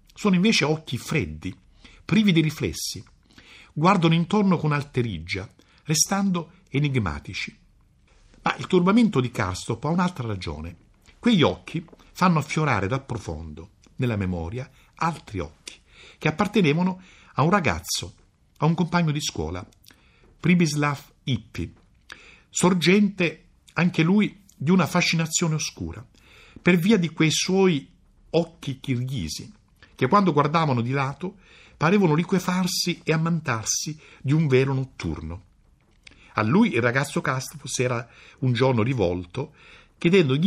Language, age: Italian, 60-79